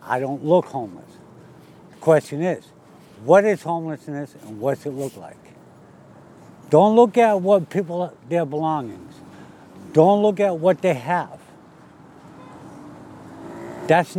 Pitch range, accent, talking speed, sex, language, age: 140-190 Hz, American, 125 wpm, male, English, 70-89